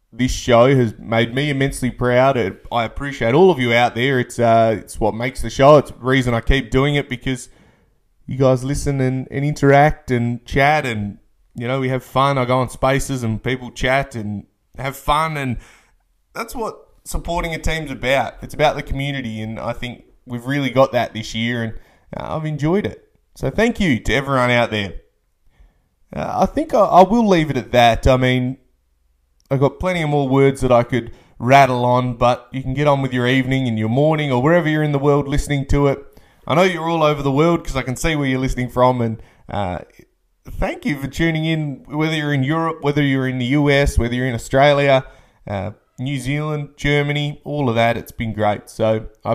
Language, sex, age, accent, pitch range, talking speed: English, male, 20-39, Australian, 120-145 Hz, 215 wpm